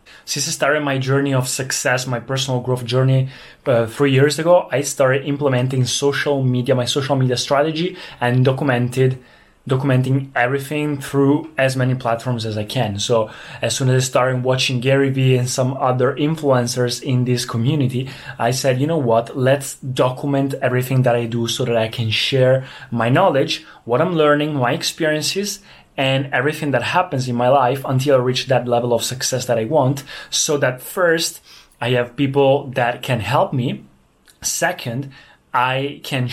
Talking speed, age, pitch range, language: 170 wpm, 20-39, 125-145 Hz, Italian